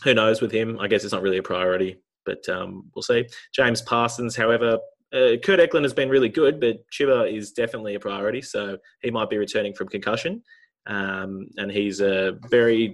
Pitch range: 105-145 Hz